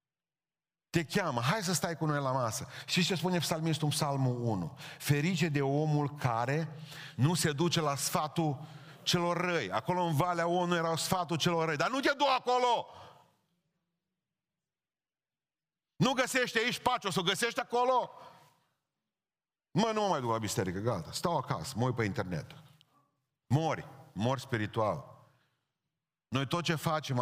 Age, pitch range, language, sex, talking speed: 40-59, 125-165 Hz, Romanian, male, 150 wpm